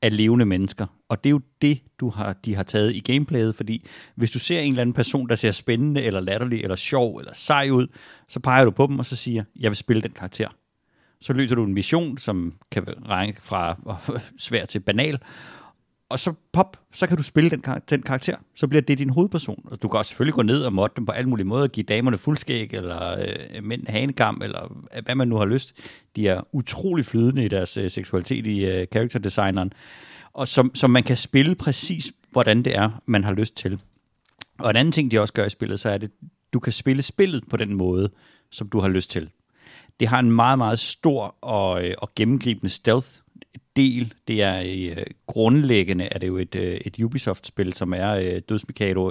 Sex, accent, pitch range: male, native, 100-130 Hz